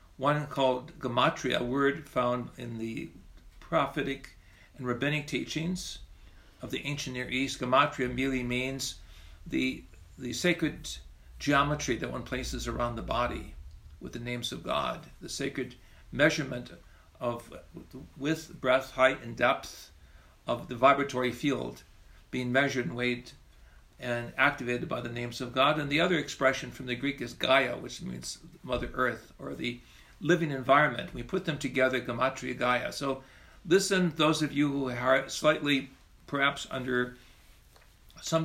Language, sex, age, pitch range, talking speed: English, male, 60-79, 120-140 Hz, 145 wpm